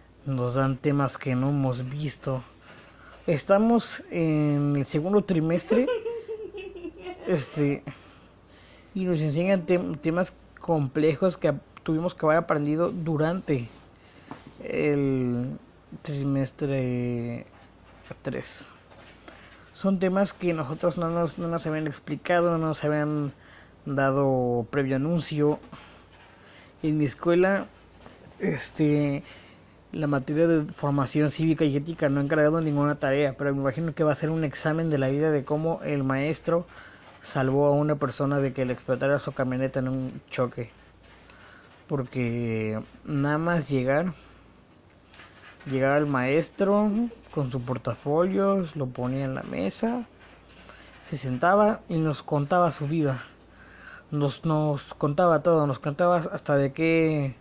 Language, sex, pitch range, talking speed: Spanish, male, 130-165 Hz, 125 wpm